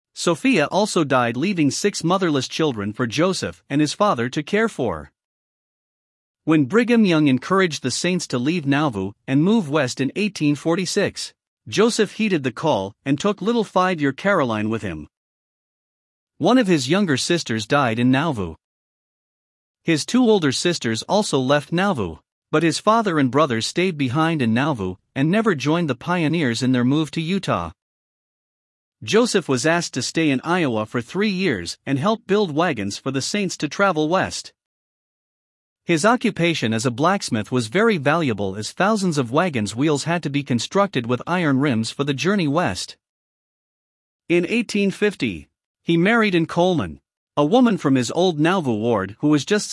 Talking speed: 160 wpm